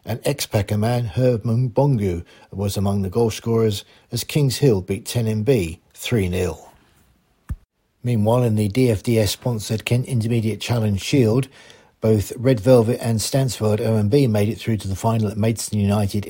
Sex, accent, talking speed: male, British, 145 wpm